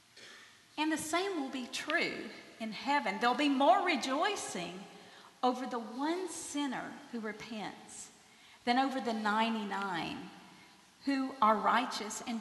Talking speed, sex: 130 wpm, female